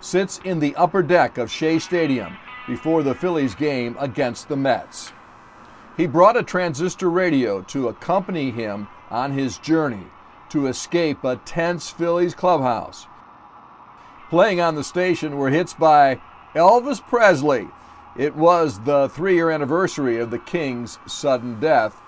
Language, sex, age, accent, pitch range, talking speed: English, male, 50-69, American, 135-170 Hz, 140 wpm